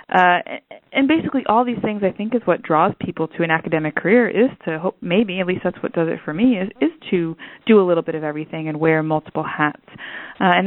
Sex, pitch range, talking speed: female, 160-200 Hz, 240 wpm